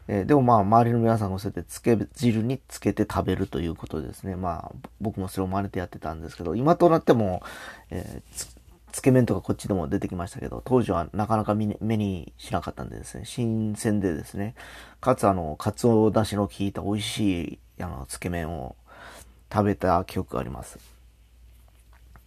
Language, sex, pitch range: Japanese, male, 95-120 Hz